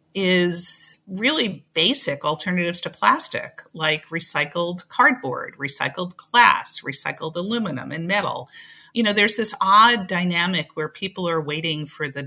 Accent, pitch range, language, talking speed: American, 155-205 Hz, English, 130 wpm